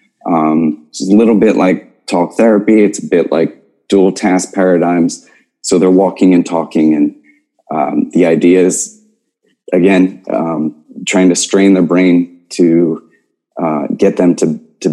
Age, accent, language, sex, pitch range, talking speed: 30-49, American, English, male, 80-100 Hz, 155 wpm